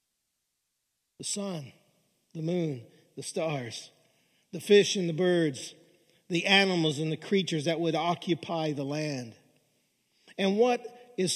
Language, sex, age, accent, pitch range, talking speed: English, male, 50-69, American, 140-190 Hz, 125 wpm